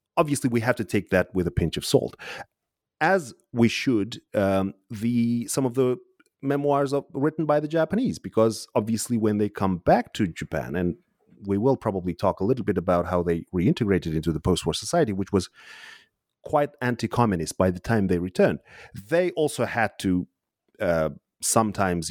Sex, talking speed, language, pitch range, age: male, 175 wpm, English, 95-140 Hz, 30-49